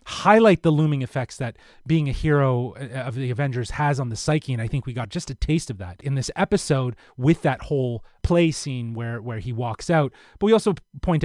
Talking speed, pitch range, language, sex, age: 225 wpm, 115-150 Hz, English, male, 30-49